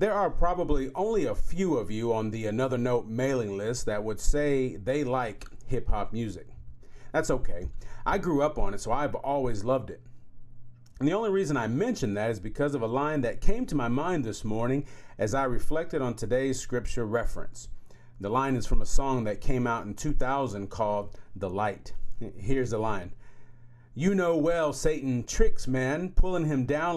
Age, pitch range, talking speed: 40-59, 110-145 Hz, 190 wpm